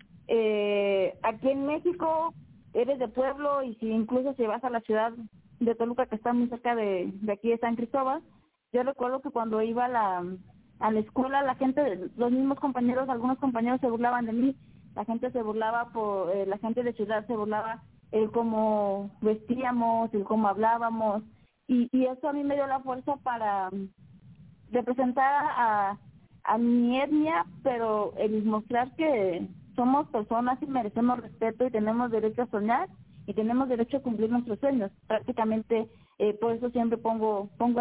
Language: English